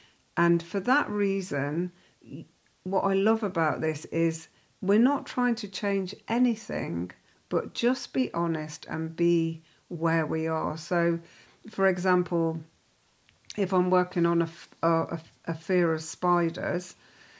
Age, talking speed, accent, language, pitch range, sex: 50-69, 130 wpm, British, English, 165-200 Hz, female